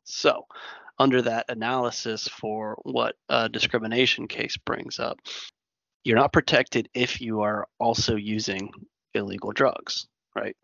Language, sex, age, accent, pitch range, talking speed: English, male, 20-39, American, 105-120 Hz, 125 wpm